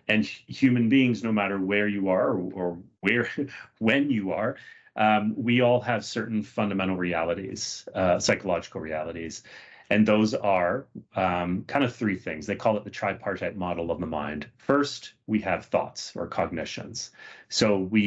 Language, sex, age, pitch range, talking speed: English, male, 30-49, 95-120 Hz, 165 wpm